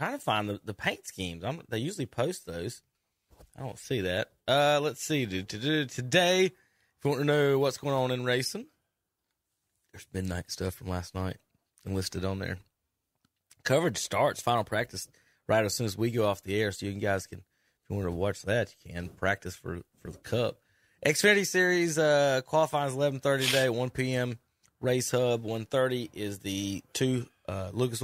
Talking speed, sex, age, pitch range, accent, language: 190 wpm, male, 20-39, 95-130 Hz, American, English